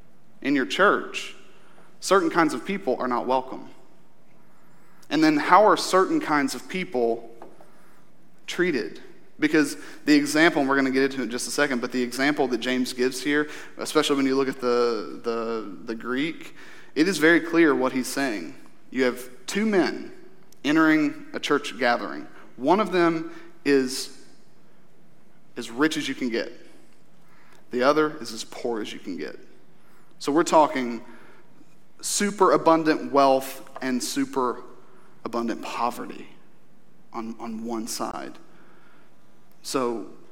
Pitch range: 125-185 Hz